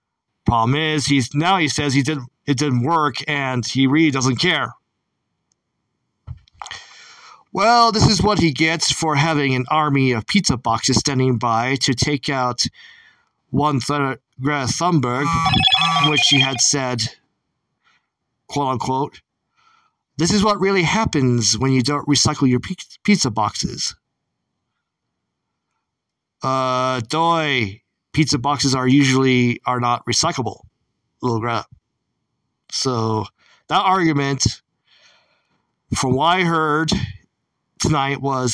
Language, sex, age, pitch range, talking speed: English, male, 40-59, 130-160 Hz, 120 wpm